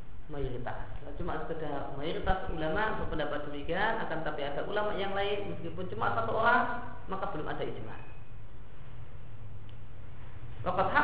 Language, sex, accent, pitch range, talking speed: Indonesian, female, native, 115-190 Hz, 125 wpm